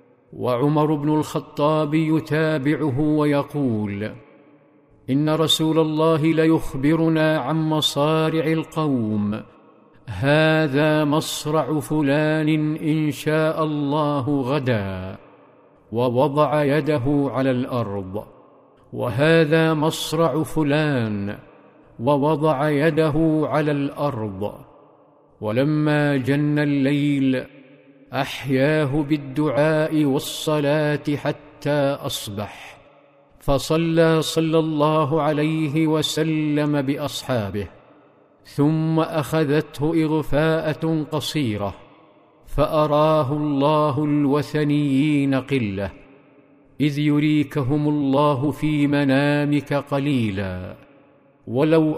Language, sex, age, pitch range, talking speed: Arabic, male, 50-69, 140-155 Hz, 65 wpm